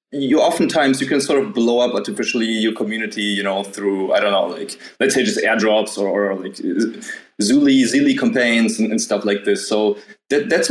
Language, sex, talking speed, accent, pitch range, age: English, male, 195 wpm, German, 100-120 Hz, 20-39